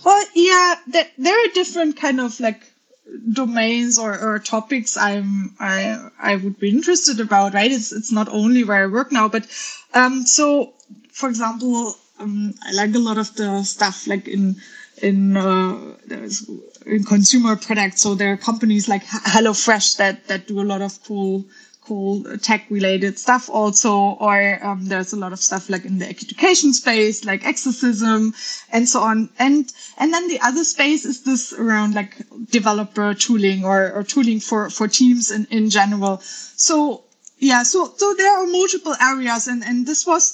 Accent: German